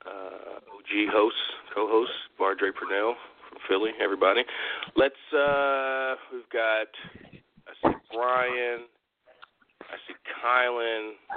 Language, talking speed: English, 100 wpm